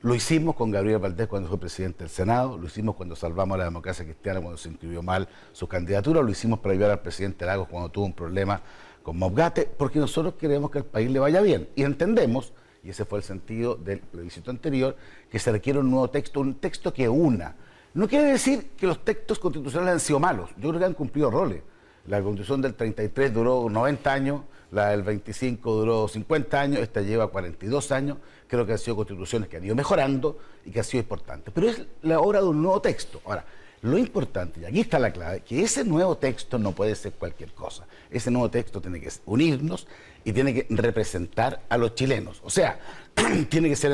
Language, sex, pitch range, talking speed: Spanish, male, 100-145 Hz, 215 wpm